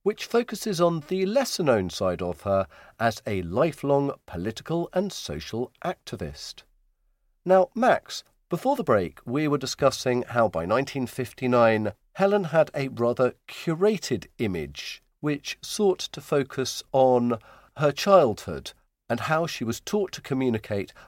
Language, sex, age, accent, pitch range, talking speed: English, male, 50-69, British, 115-170 Hz, 130 wpm